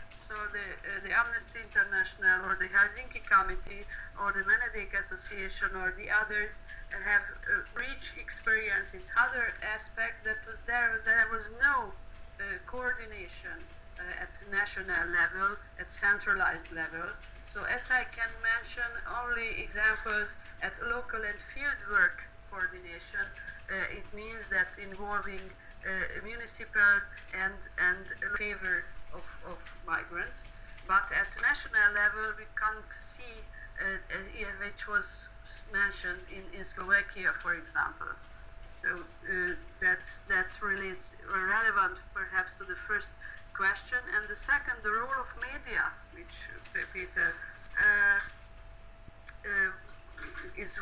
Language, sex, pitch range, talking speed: Hungarian, female, 200-250 Hz, 125 wpm